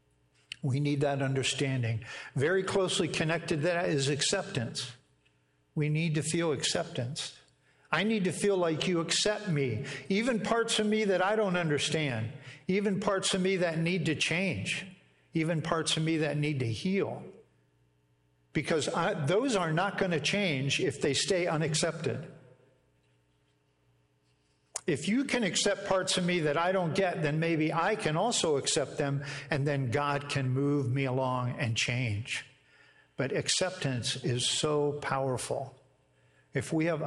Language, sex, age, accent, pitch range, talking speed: English, male, 60-79, American, 125-180 Hz, 150 wpm